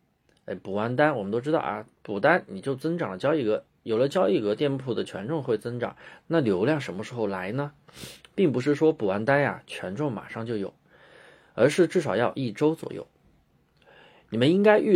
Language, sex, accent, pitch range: Chinese, male, native, 115-165 Hz